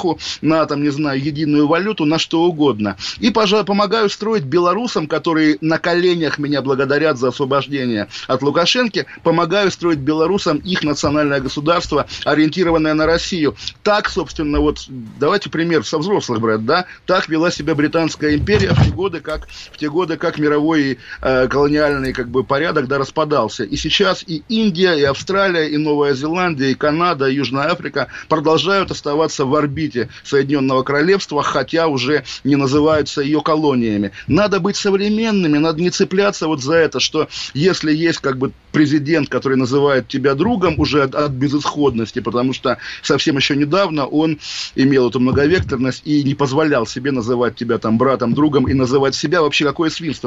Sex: male